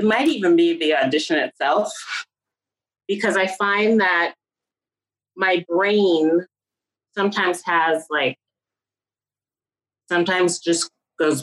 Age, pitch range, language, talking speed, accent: 30-49, 140-200 Hz, English, 100 wpm, American